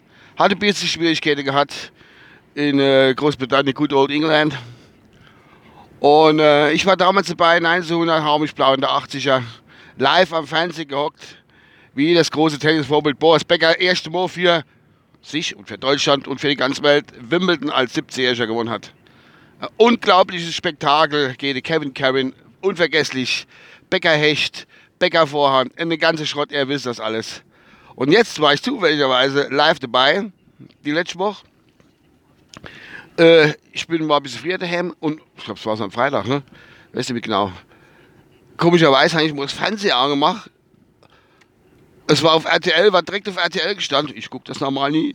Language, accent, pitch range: German, German, 140-175 Hz